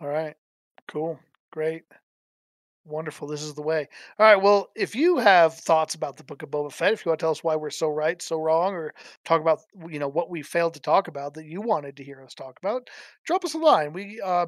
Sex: male